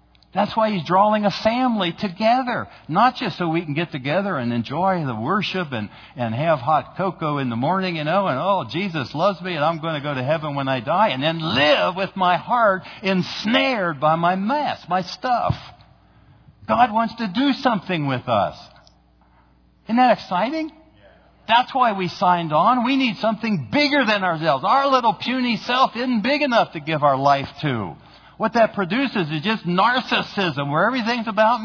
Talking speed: 185 wpm